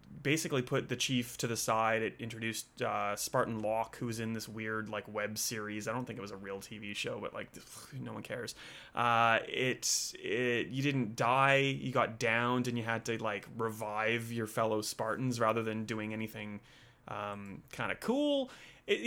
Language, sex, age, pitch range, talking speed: English, male, 30-49, 115-130 Hz, 190 wpm